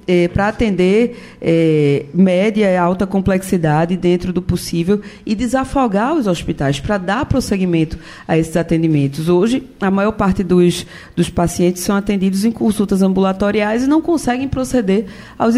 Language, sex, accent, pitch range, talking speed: Portuguese, female, Brazilian, 175-220 Hz, 145 wpm